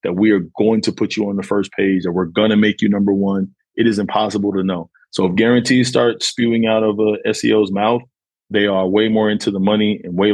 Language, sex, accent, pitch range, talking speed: English, male, American, 95-115 Hz, 245 wpm